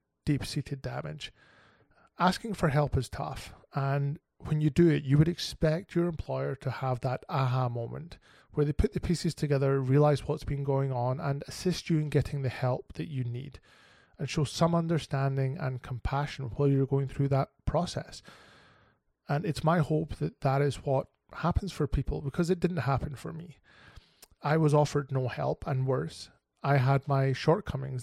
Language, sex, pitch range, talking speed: English, male, 130-150 Hz, 180 wpm